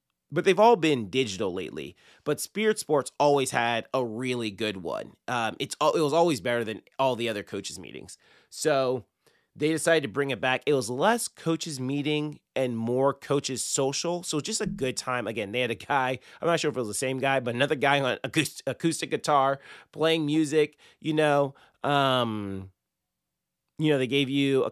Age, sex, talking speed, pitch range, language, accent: 30-49, male, 190 wpm, 110-150 Hz, English, American